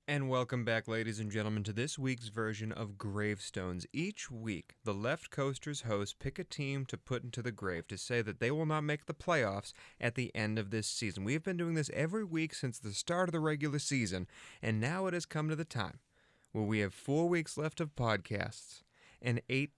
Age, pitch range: 30-49, 105-150 Hz